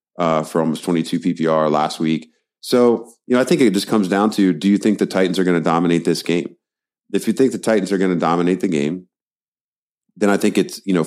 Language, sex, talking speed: English, male, 245 wpm